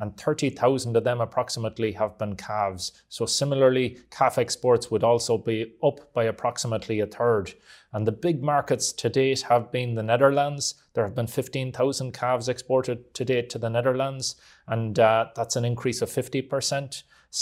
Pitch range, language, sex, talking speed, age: 115-130 Hz, English, male, 165 wpm, 30-49